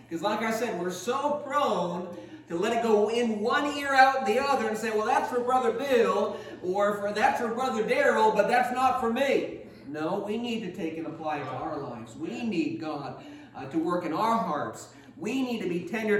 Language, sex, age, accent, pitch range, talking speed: English, male, 40-59, American, 150-235 Hz, 220 wpm